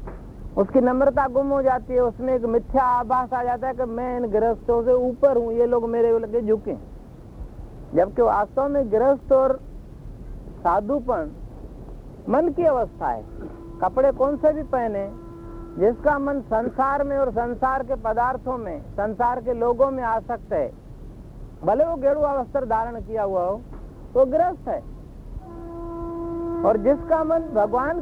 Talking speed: 150 wpm